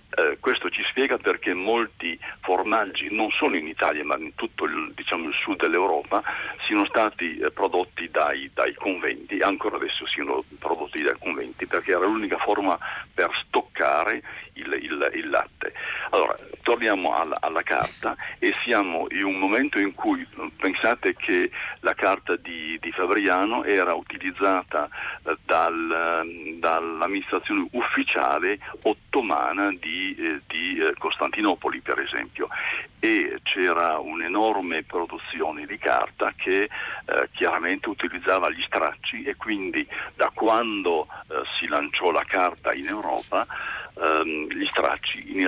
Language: Italian